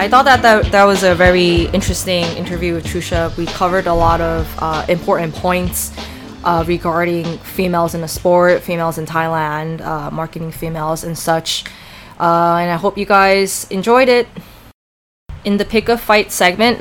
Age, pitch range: 20-39, 170-215 Hz